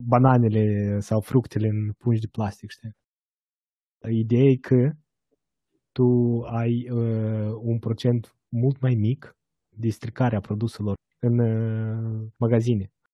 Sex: male